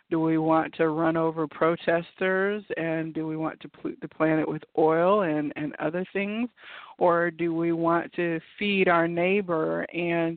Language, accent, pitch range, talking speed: English, American, 160-185 Hz, 175 wpm